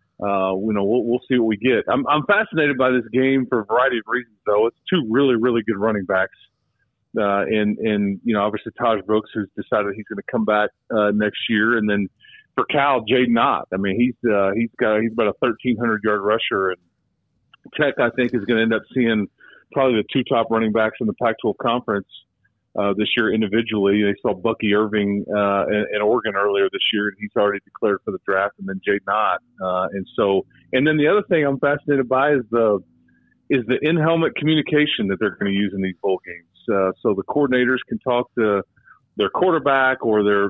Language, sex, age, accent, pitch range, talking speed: English, male, 40-59, American, 100-125 Hz, 220 wpm